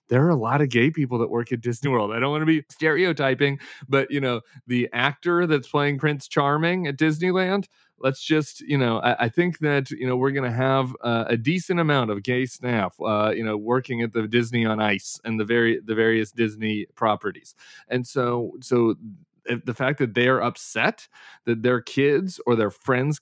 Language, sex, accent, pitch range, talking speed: English, male, American, 115-150 Hz, 210 wpm